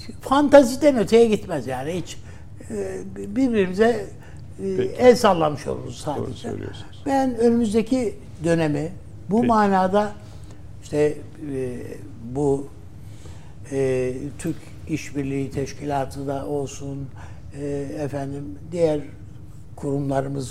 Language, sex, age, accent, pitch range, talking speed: Turkish, male, 60-79, native, 110-150 Hz, 75 wpm